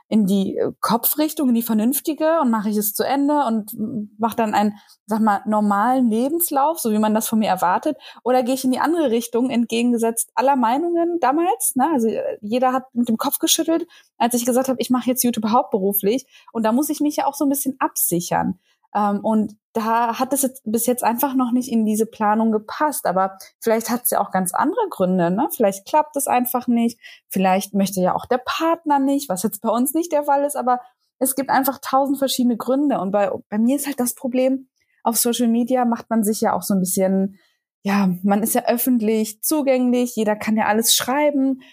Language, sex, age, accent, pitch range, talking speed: German, female, 20-39, German, 215-280 Hz, 210 wpm